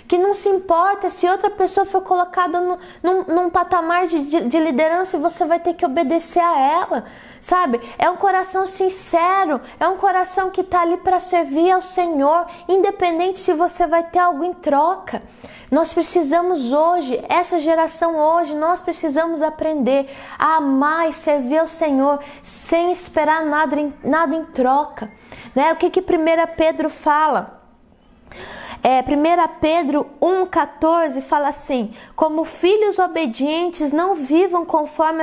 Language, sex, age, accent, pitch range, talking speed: Portuguese, female, 20-39, Brazilian, 300-360 Hz, 150 wpm